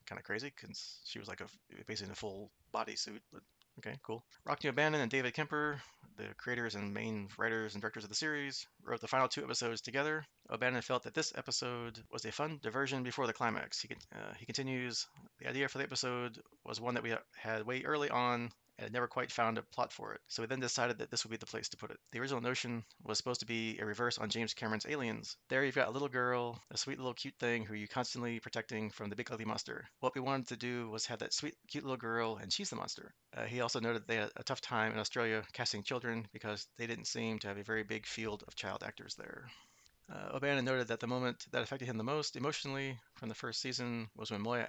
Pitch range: 110-130 Hz